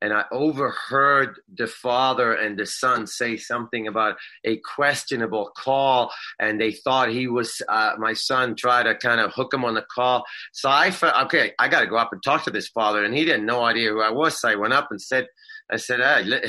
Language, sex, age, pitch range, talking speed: English, male, 30-49, 120-165 Hz, 225 wpm